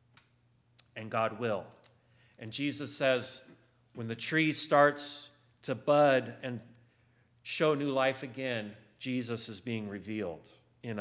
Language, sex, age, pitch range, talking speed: English, male, 40-59, 120-195 Hz, 120 wpm